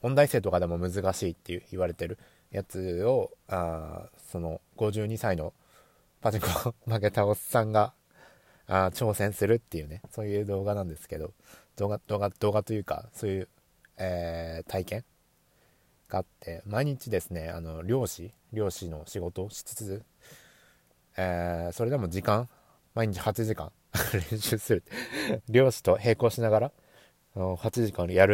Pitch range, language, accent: 90-115 Hz, Japanese, native